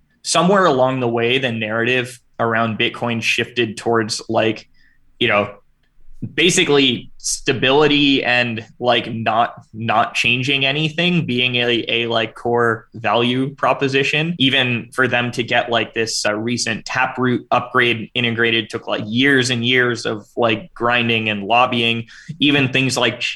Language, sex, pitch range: English, male, 115-130 Hz